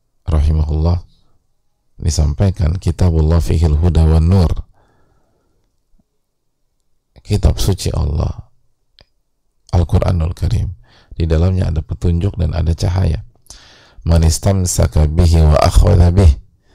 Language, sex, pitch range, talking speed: English, male, 80-95 Hz, 80 wpm